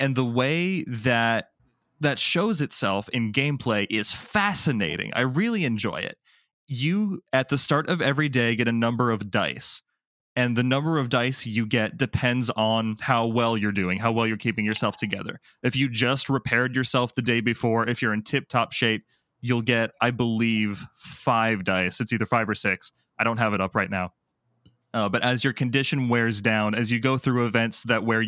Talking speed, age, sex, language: 195 wpm, 20-39, male, English